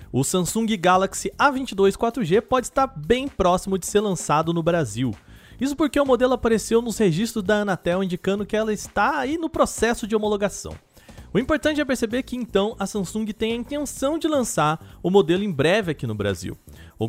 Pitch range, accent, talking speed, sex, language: 160-230 Hz, Brazilian, 185 wpm, male, Portuguese